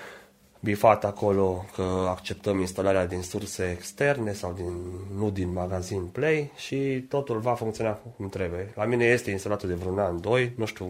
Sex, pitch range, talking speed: male, 95-115 Hz, 165 wpm